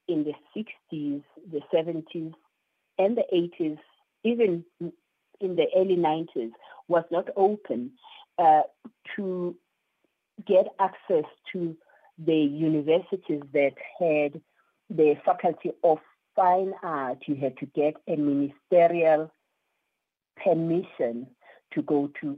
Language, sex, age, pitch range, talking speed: English, female, 50-69, 145-195 Hz, 105 wpm